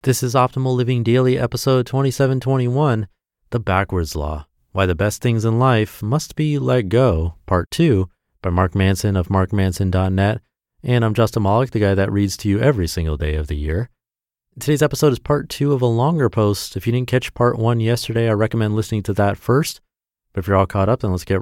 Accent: American